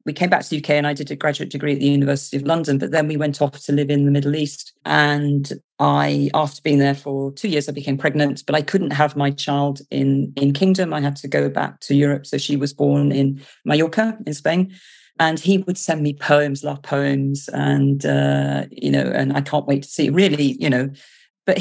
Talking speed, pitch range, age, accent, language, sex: 235 wpm, 140-185 Hz, 40-59, British, English, female